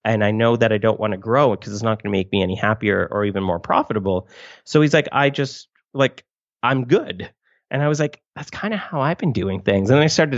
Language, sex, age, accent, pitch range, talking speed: English, male, 30-49, American, 110-140 Hz, 270 wpm